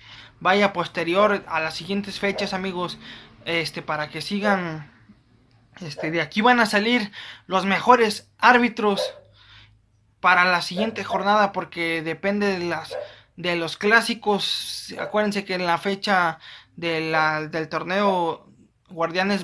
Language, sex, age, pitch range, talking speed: Spanish, male, 20-39, 165-205 Hz, 125 wpm